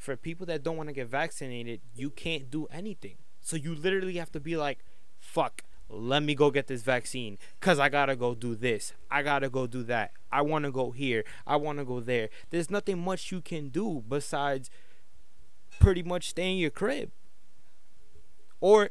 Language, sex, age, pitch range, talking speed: English, male, 20-39, 130-175 Hz, 200 wpm